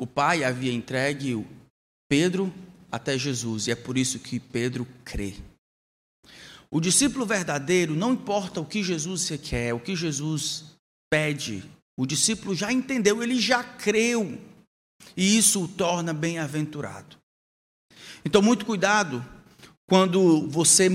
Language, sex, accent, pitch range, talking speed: Portuguese, male, Brazilian, 130-190 Hz, 125 wpm